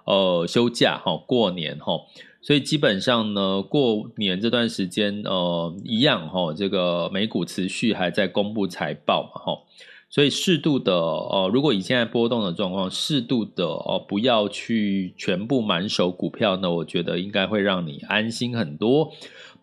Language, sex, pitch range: Chinese, male, 100-145 Hz